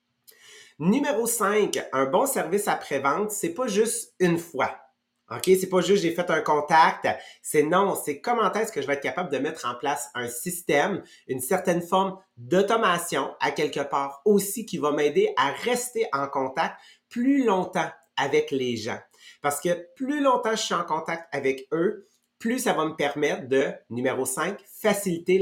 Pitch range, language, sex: 140-200 Hz, English, male